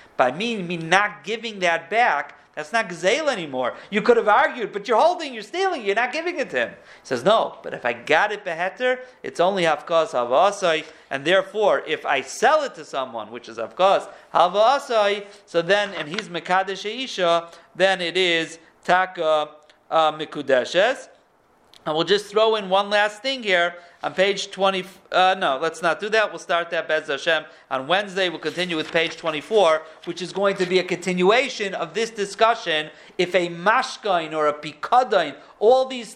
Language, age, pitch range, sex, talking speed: English, 40-59, 170-235 Hz, male, 185 wpm